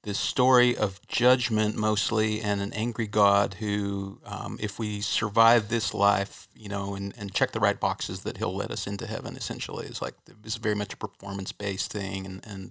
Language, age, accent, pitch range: English, 40-59, American, 100-110 Hz